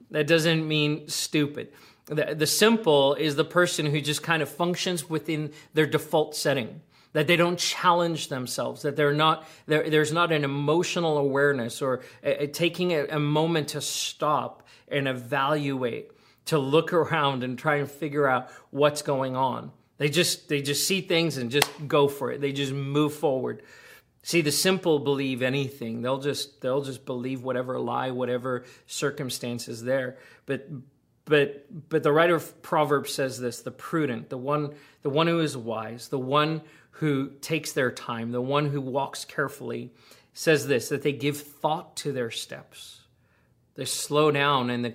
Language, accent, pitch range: English, American, 135-155 Hz